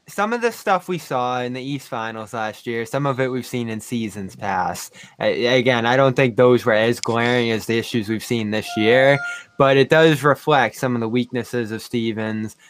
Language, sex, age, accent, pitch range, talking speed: English, male, 20-39, American, 115-140 Hz, 215 wpm